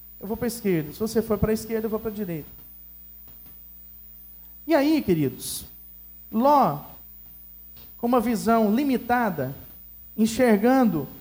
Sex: male